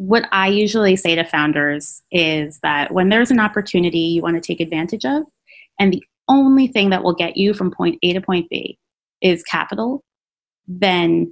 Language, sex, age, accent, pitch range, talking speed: English, female, 20-39, American, 170-205 Hz, 185 wpm